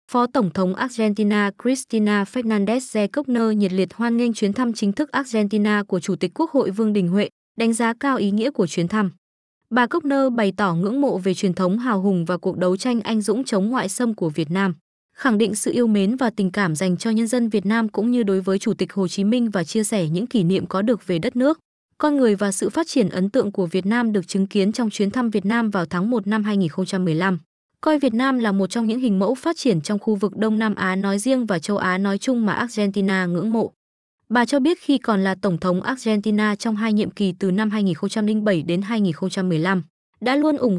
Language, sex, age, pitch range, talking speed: Vietnamese, female, 20-39, 195-240 Hz, 240 wpm